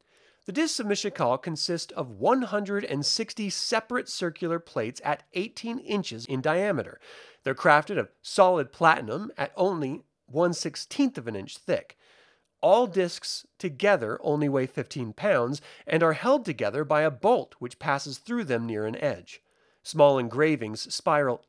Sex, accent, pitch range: male, American, 140-215 Hz